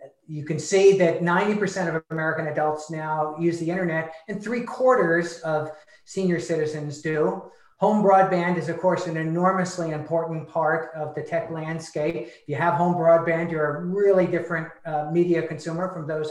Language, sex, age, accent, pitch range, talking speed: English, male, 50-69, American, 160-180 Hz, 170 wpm